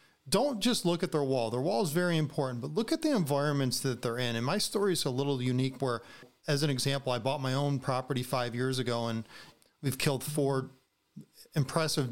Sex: male